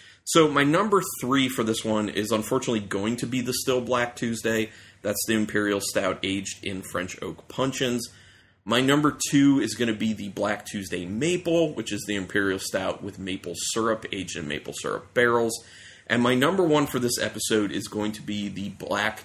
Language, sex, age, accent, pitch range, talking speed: English, male, 30-49, American, 100-125 Hz, 195 wpm